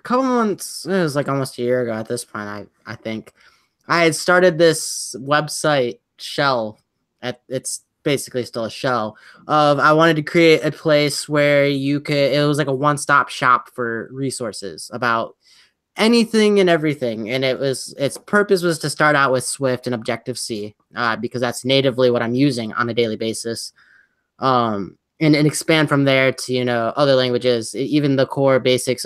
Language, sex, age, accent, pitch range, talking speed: English, male, 10-29, American, 125-150 Hz, 185 wpm